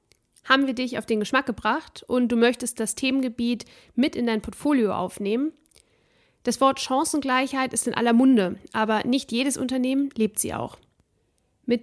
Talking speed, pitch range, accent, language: 160 wpm, 215-255 Hz, German, German